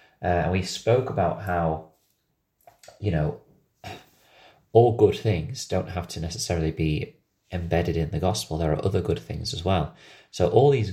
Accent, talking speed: British, 160 wpm